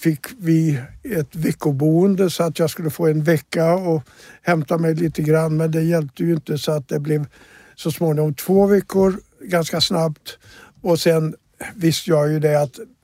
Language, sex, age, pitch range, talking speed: Swedish, male, 60-79, 155-175 Hz, 175 wpm